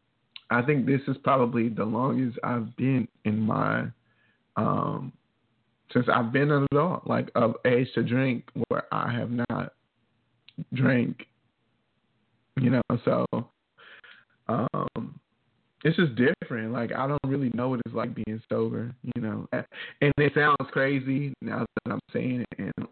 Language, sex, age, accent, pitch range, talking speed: English, male, 20-39, American, 115-135 Hz, 145 wpm